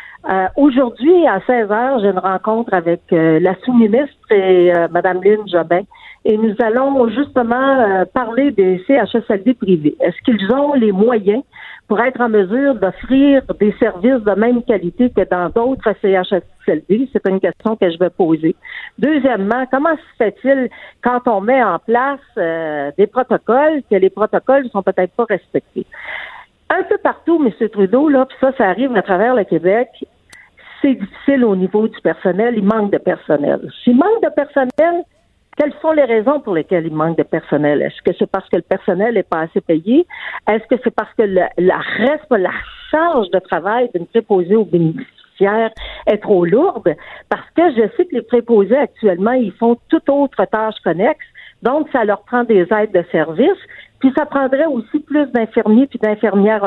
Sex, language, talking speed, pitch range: female, French, 180 wpm, 190-270 Hz